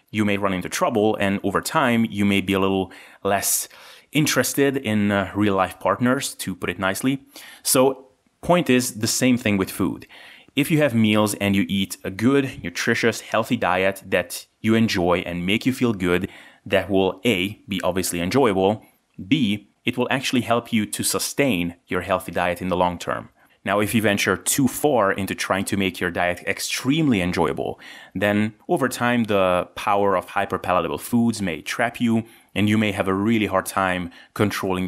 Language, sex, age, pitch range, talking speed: English, male, 30-49, 95-120 Hz, 180 wpm